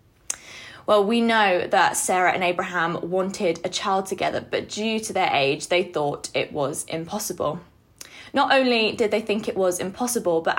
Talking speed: 170 wpm